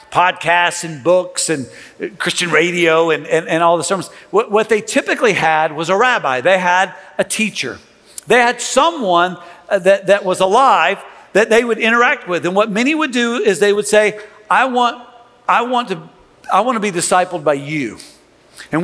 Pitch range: 170-215 Hz